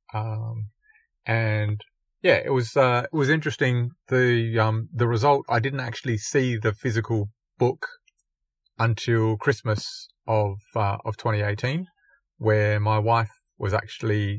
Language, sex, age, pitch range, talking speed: English, male, 30-49, 105-125 Hz, 130 wpm